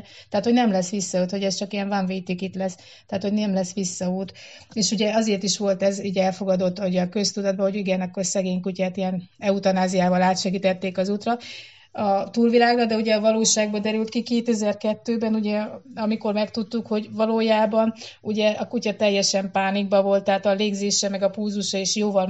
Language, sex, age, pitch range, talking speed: Hungarian, female, 30-49, 185-210 Hz, 180 wpm